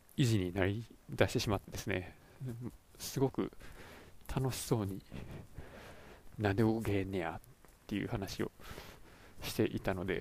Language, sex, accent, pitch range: Japanese, male, native, 95-120 Hz